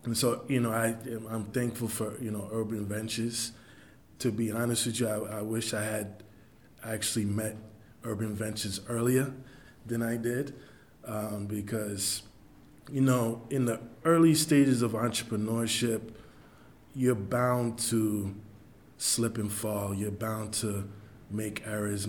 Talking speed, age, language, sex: 135 wpm, 20-39, English, male